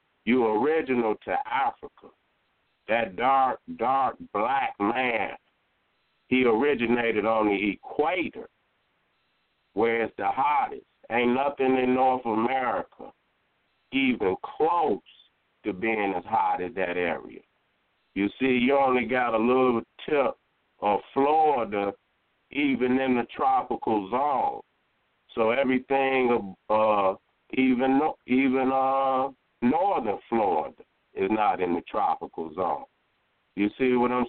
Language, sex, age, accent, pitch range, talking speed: English, male, 50-69, American, 115-140 Hz, 115 wpm